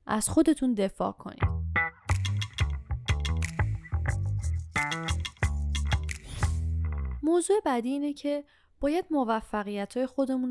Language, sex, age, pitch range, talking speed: Persian, female, 10-29, 185-260 Hz, 65 wpm